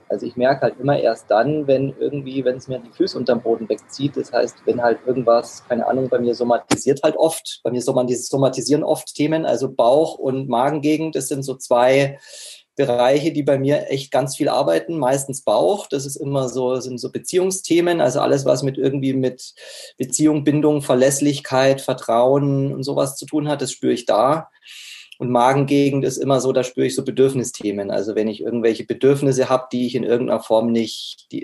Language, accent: German, German